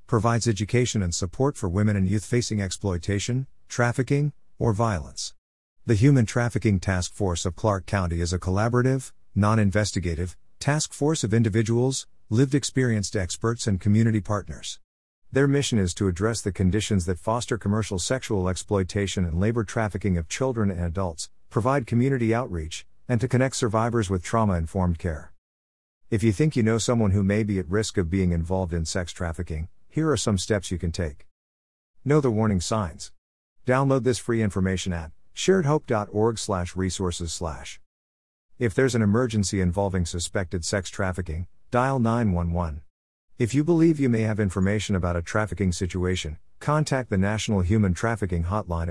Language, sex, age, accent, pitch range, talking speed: English, male, 50-69, American, 90-120 Hz, 160 wpm